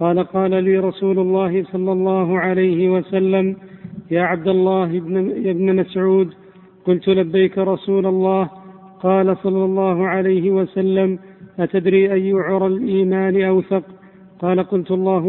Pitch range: 185-190 Hz